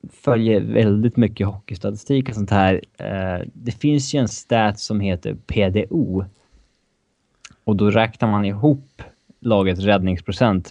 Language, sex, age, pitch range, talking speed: Swedish, male, 20-39, 85-110 Hz, 125 wpm